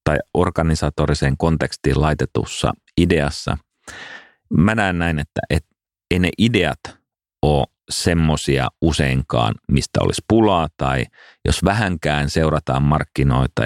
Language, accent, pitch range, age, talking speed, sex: Finnish, native, 70-90 Hz, 40-59, 110 wpm, male